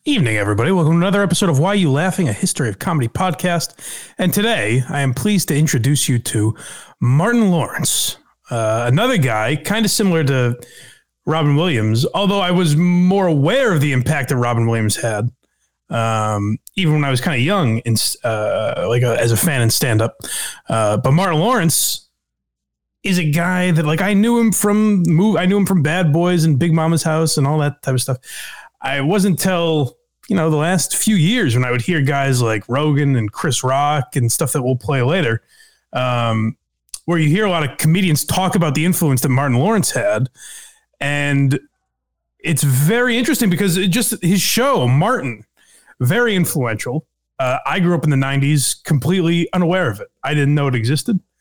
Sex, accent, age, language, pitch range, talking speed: male, American, 30-49, English, 125-175 Hz, 185 wpm